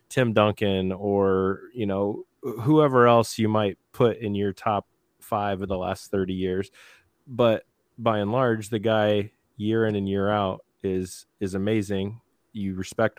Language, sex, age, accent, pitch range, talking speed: English, male, 20-39, American, 95-110 Hz, 160 wpm